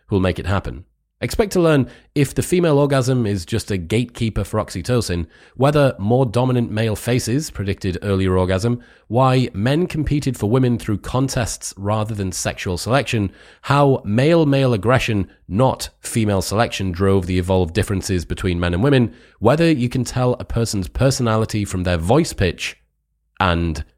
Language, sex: English, male